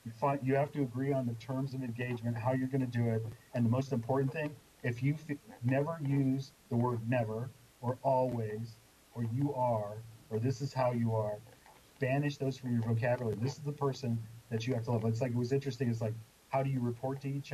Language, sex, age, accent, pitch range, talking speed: English, male, 40-59, American, 115-140 Hz, 220 wpm